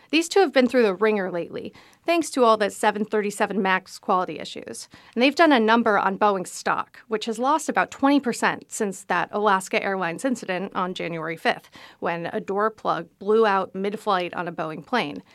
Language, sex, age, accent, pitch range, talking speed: English, female, 40-59, American, 190-255 Hz, 190 wpm